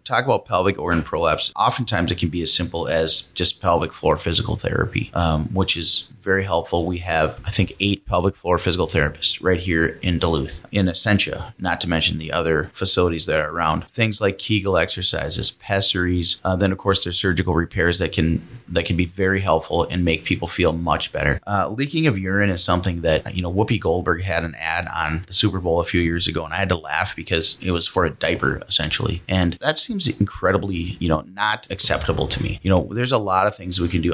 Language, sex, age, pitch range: English, male, 30-49, 85-100 Hz